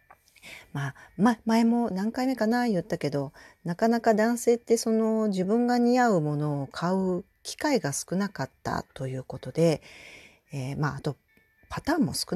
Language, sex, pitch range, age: Japanese, female, 140-220 Hz, 40-59